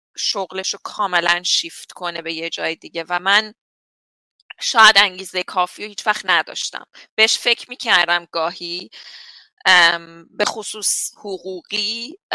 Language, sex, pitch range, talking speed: Persian, female, 175-205 Hz, 125 wpm